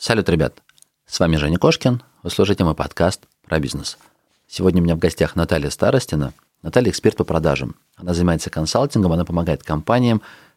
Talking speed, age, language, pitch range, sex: 165 wpm, 30-49, Russian, 80-105 Hz, male